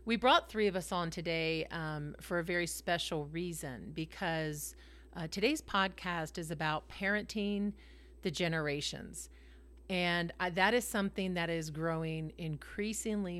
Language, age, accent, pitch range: English, 40-59, American, 155-195 Hz